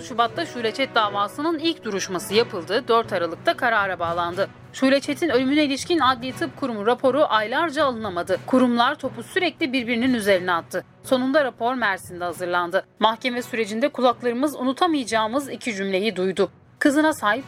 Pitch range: 190-280 Hz